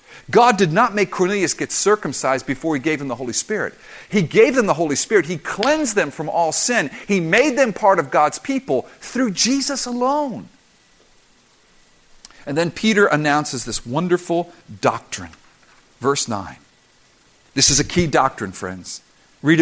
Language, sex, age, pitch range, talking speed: English, male, 50-69, 145-205 Hz, 160 wpm